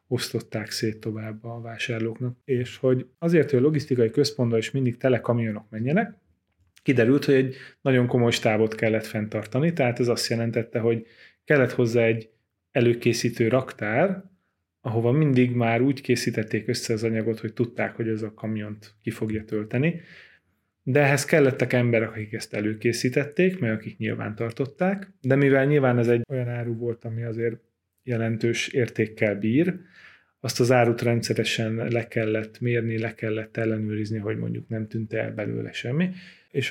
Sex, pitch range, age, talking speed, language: male, 110-130 Hz, 30-49, 150 wpm, Hungarian